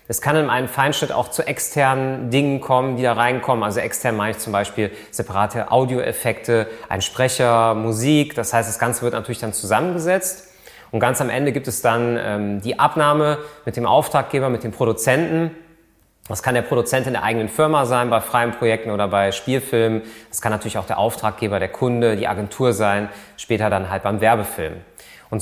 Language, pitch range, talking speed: German, 110-140 Hz, 190 wpm